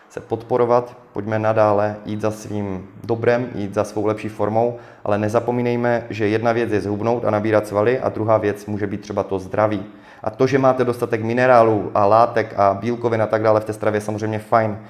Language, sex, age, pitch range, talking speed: Czech, male, 20-39, 105-120 Hz, 195 wpm